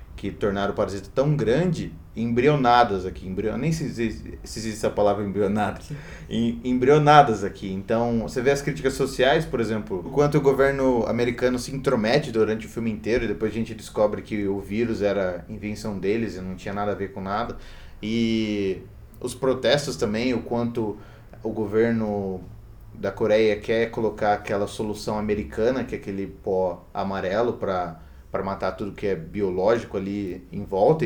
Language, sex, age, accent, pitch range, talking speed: Portuguese, male, 20-39, Brazilian, 100-130 Hz, 170 wpm